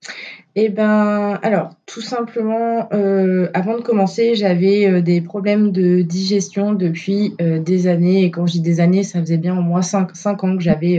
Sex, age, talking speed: female, 20-39, 190 wpm